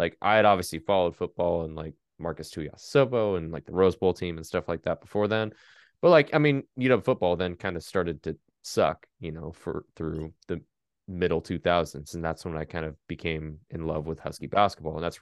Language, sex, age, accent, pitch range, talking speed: English, male, 20-39, American, 80-110 Hz, 215 wpm